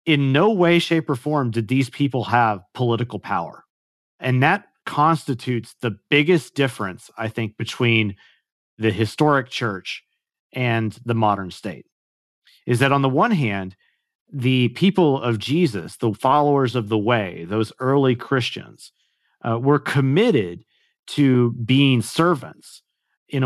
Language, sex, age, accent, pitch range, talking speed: English, male, 40-59, American, 115-140 Hz, 135 wpm